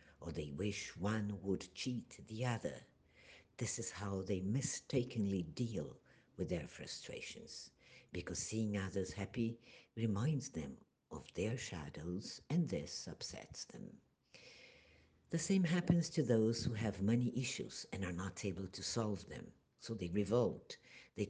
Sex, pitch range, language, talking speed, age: female, 95-130 Hz, Portuguese, 140 wpm, 60-79